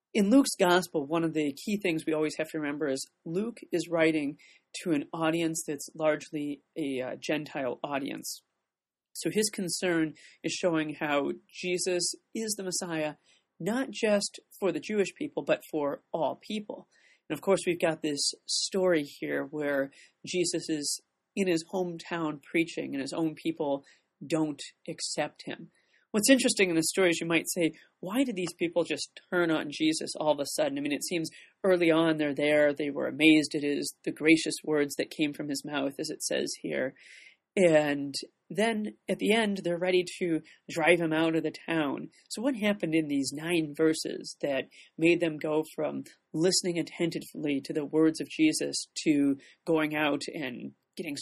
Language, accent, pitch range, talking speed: English, American, 150-180 Hz, 180 wpm